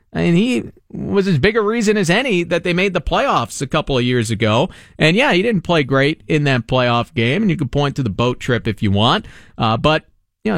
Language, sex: English, male